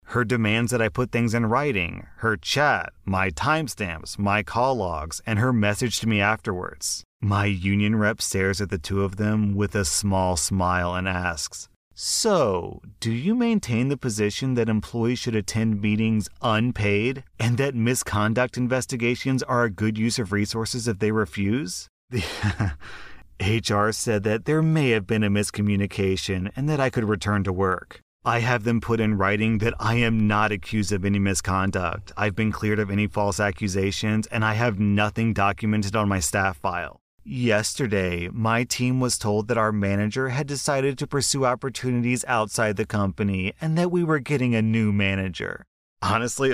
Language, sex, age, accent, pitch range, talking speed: English, male, 30-49, American, 100-120 Hz, 170 wpm